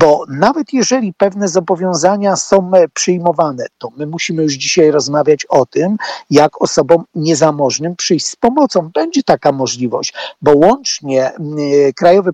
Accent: native